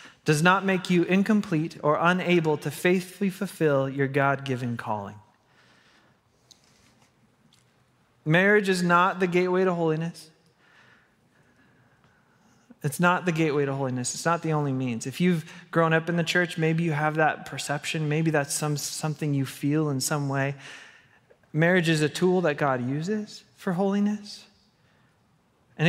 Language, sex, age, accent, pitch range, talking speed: English, male, 30-49, American, 150-185 Hz, 145 wpm